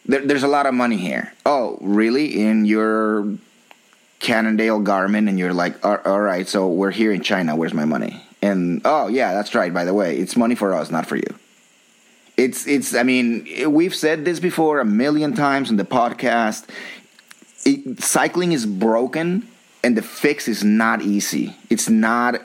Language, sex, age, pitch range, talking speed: English, male, 30-49, 105-145 Hz, 175 wpm